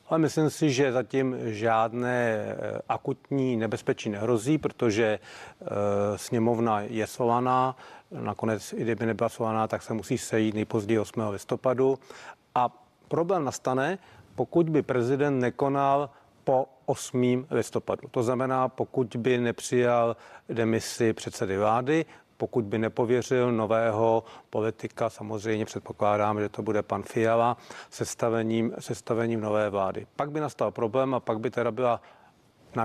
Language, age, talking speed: Czech, 40-59, 125 wpm